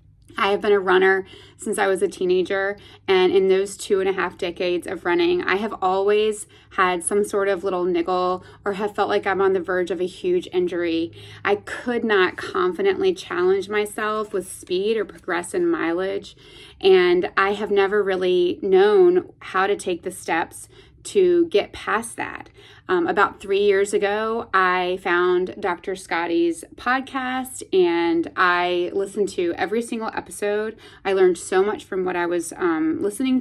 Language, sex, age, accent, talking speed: English, female, 20-39, American, 170 wpm